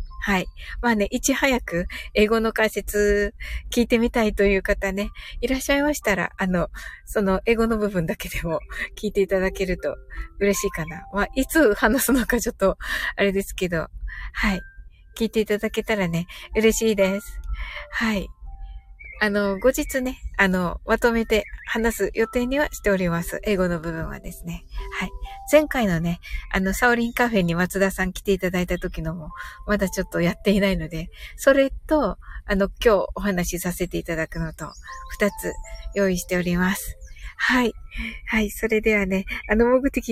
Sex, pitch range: female, 185-235 Hz